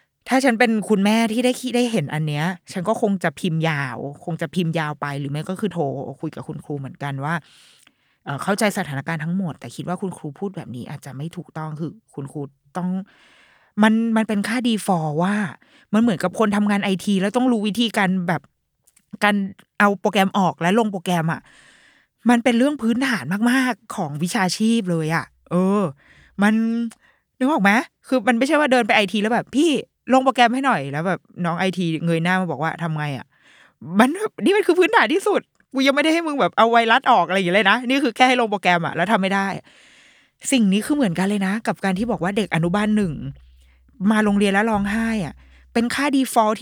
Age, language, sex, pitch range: 20-39, Thai, female, 170-235 Hz